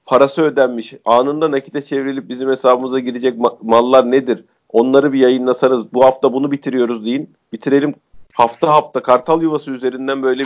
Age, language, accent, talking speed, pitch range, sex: 40-59, Turkish, native, 150 wpm, 125-145 Hz, male